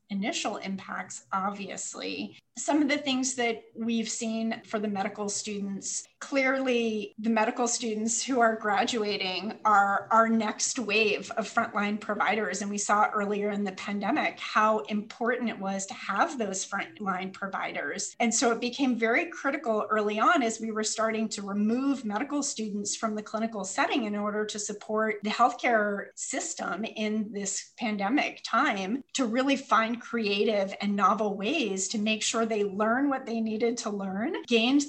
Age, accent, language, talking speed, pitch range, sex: 30-49, American, English, 160 wpm, 205-235 Hz, female